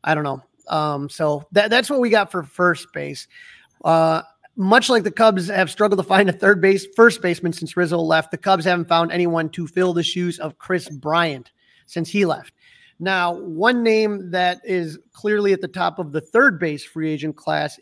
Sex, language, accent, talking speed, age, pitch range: male, English, American, 205 wpm, 30-49, 160-195 Hz